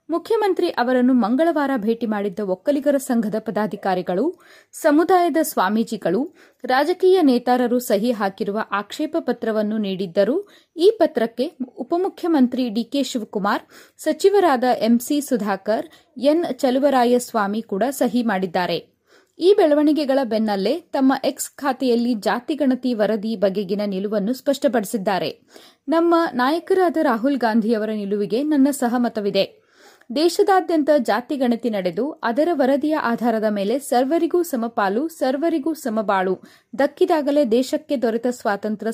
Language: Kannada